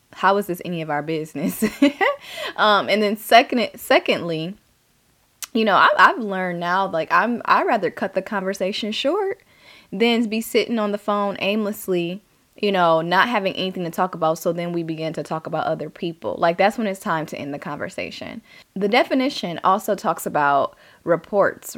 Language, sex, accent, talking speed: English, female, American, 180 wpm